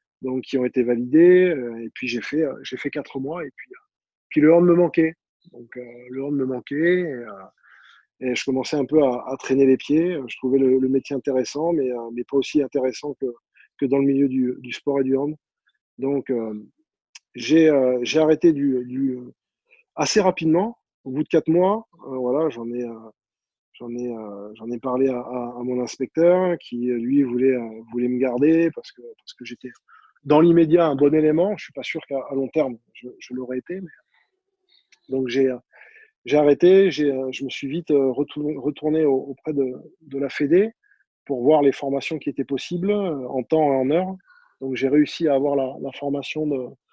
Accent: French